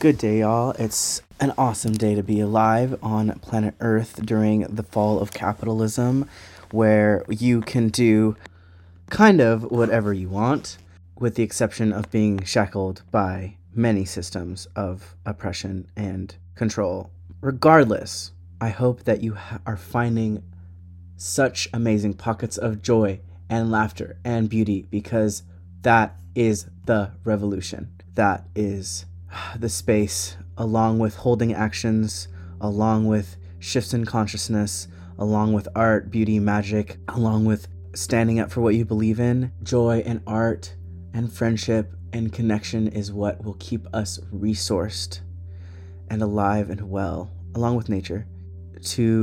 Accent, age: American, 20-39